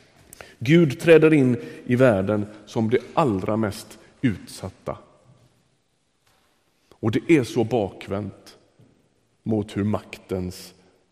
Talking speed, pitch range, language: 95 wpm, 95-115 Hz, Swedish